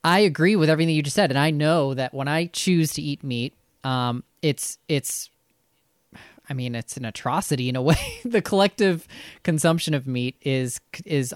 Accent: American